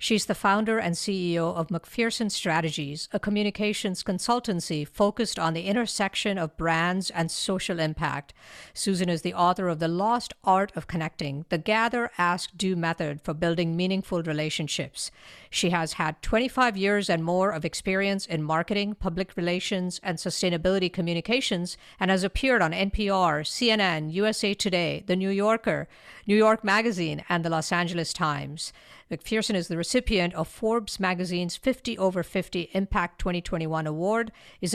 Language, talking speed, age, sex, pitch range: English, 150 wpm, 50-69, female, 170-205 Hz